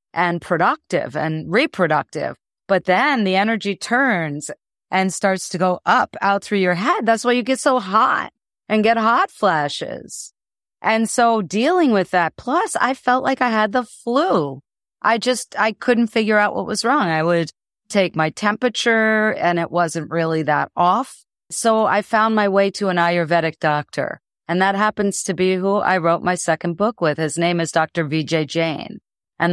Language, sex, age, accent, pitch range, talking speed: English, female, 40-59, American, 165-210 Hz, 180 wpm